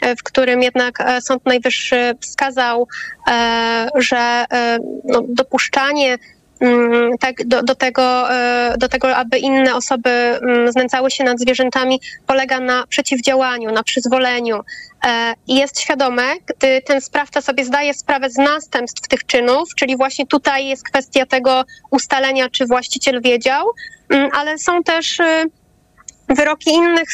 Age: 20-39